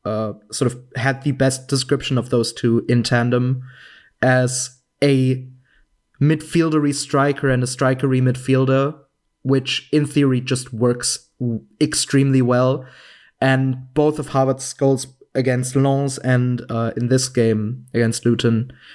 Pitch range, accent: 125-140 Hz, German